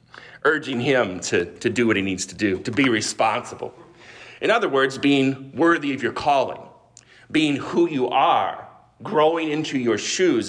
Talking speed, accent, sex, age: 165 wpm, American, male, 40-59